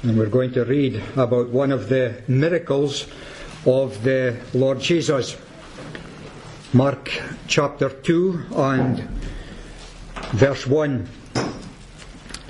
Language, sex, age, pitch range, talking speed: English, male, 60-79, 135-170 Hz, 95 wpm